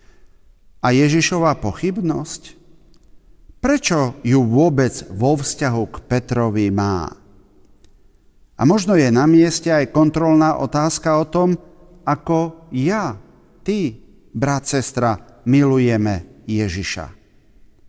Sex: male